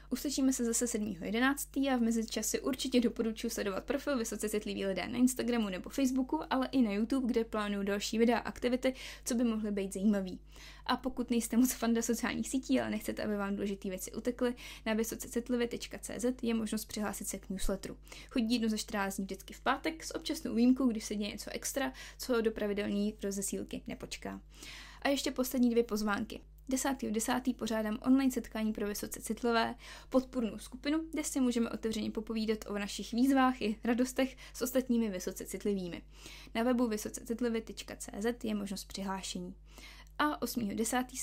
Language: Czech